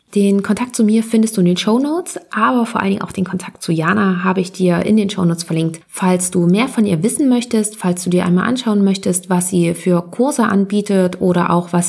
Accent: German